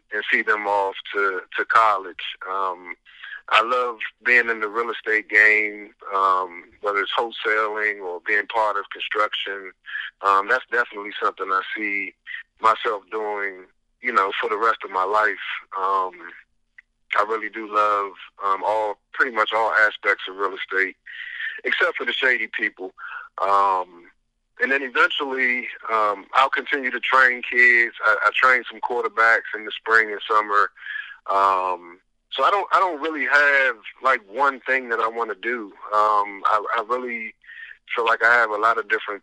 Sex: male